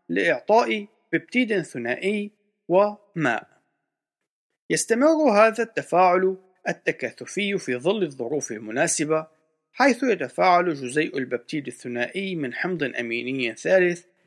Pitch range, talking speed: 150-205 Hz, 90 wpm